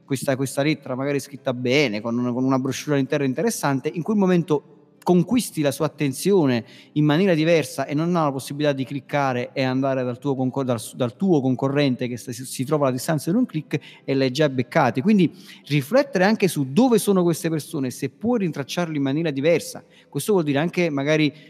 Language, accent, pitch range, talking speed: Italian, native, 130-155 Hz, 190 wpm